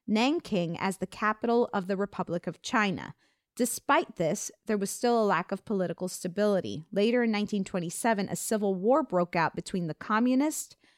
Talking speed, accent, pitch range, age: 165 wpm, American, 185-240 Hz, 30-49